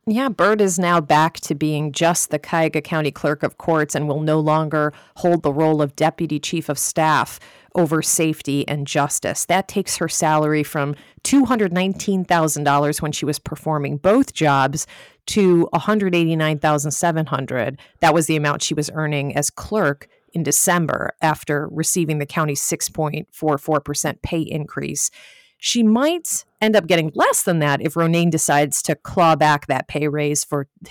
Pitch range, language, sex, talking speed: 150-175 Hz, English, female, 155 wpm